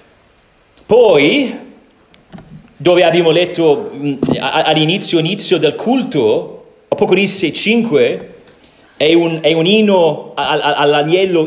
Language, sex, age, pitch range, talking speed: Italian, male, 40-59, 170-250 Hz, 80 wpm